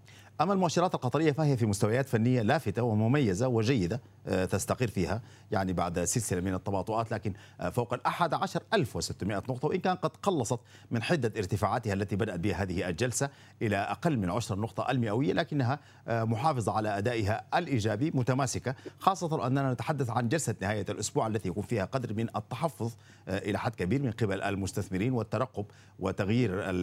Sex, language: male, Arabic